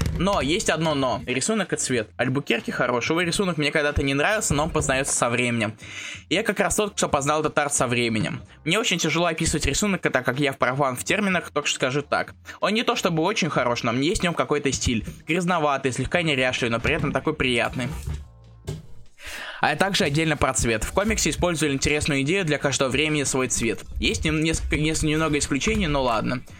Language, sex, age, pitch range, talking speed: Russian, male, 20-39, 125-160 Hz, 200 wpm